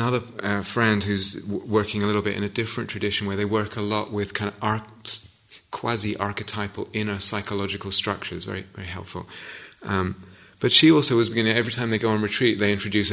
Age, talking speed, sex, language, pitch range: 30-49, 200 wpm, male, English, 100-125 Hz